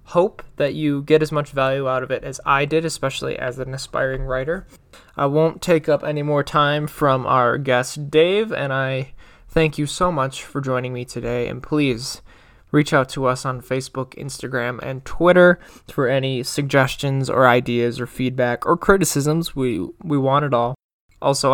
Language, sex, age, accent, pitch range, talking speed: English, male, 20-39, American, 130-155 Hz, 180 wpm